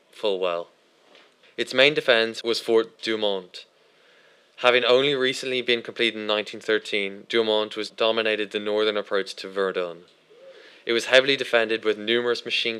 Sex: male